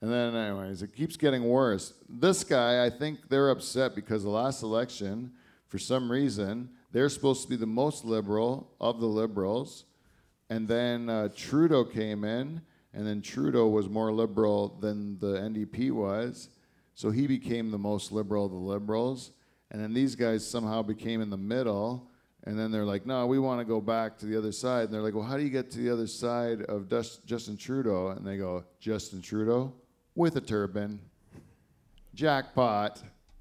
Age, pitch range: 40-59, 100-120 Hz